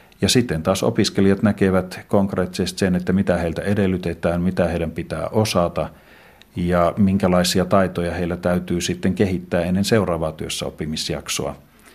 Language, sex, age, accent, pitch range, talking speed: Finnish, male, 50-69, native, 90-100 Hz, 125 wpm